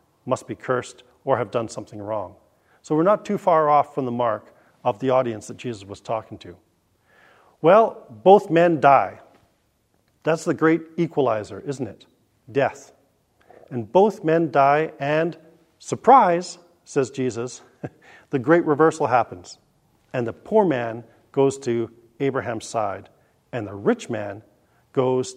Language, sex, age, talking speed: English, male, 40-59, 145 wpm